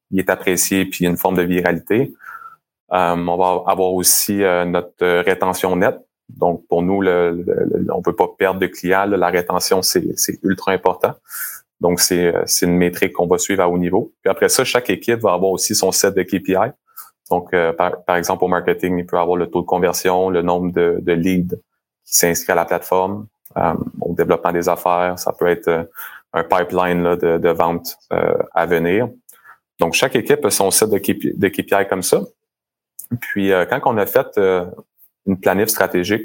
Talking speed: 200 wpm